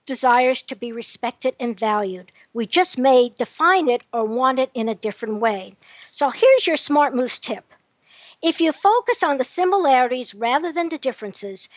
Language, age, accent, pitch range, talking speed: English, 50-69, American, 235-345 Hz, 175 wpm